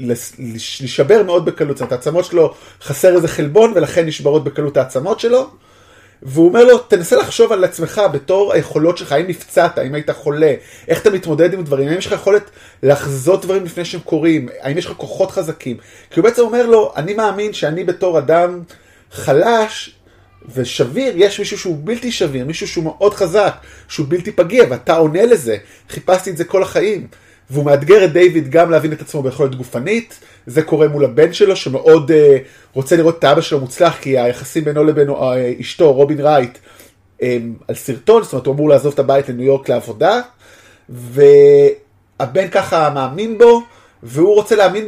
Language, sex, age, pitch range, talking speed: Hebrew, male, 30-49, 140-200 Hz, 175 wpm